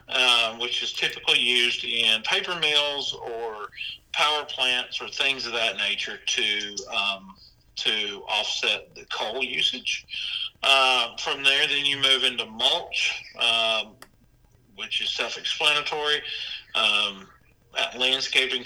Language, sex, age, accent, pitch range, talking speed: English, male, 40-59, American, 110-135 Hz, 120 wpm